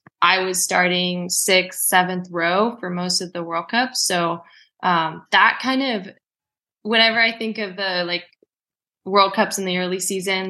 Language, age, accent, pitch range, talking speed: English, 20-39, American, 175-205 Hz, 165 wpm